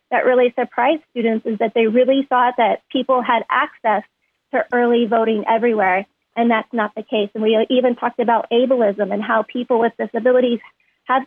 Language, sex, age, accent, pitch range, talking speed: English, female, 30-49, American, 225-250 Hz, 180 wpm